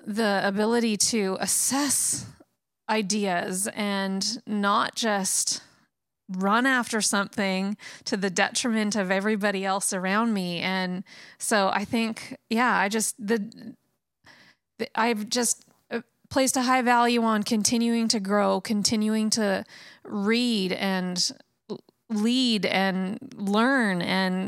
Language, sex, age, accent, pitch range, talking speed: English, female, 30-49, American, 195-235 Hz, 115 wpm